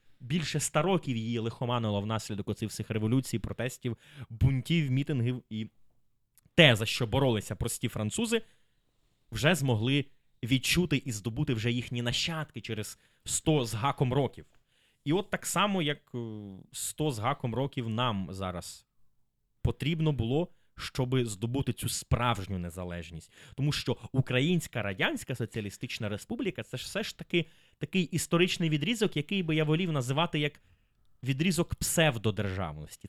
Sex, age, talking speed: male, 20-39, 130 wpm